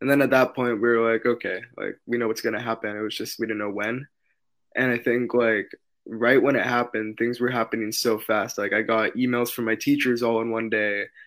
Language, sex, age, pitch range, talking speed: English, male, 20-39, 110-125 Hz, 250 wpm